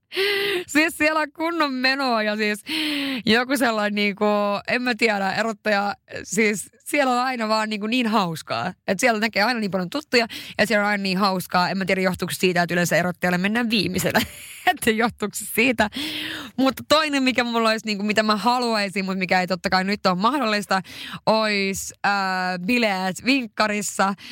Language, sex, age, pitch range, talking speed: Finnish, female, 20-39, 185-245 Hz, 180 wpm